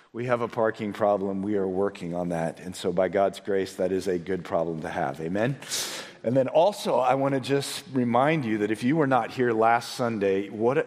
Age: 40-59